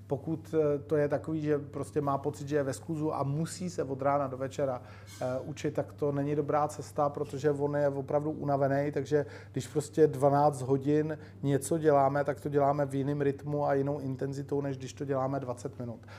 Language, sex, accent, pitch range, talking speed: Czech, male, native, 135-160 Hz, 195 wpm